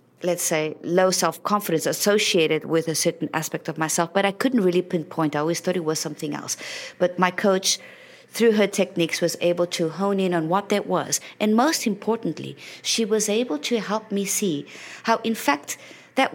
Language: English